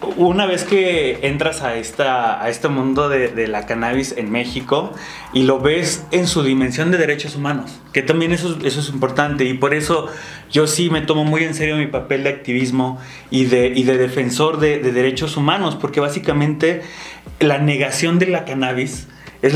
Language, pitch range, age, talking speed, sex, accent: Spanish, 135-165 Hz, 30-49, 180 wpm, male, Mexican